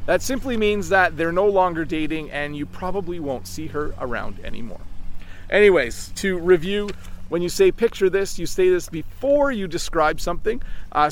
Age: 40-59